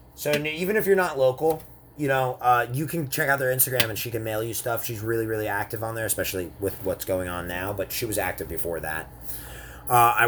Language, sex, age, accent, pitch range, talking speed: English, male, 30-49, American, 105-150 Hz, 240 wpm